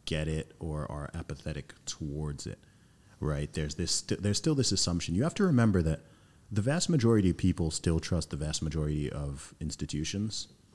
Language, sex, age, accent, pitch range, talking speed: English, male, 30-49, American, 75-100 Hz, 175 wpm